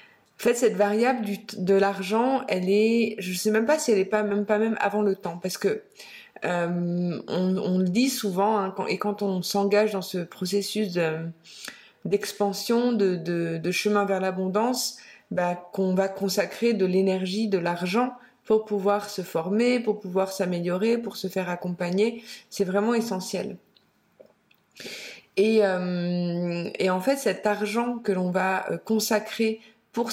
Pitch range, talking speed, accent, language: 185-220 Hz, 165 wpm, French, French